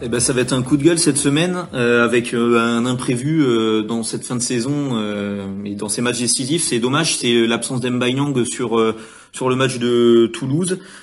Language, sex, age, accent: French, male, 30-49, French